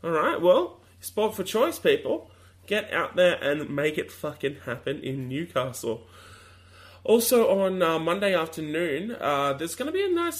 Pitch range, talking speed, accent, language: 115-185 Hz, 160 wpm, Australian, English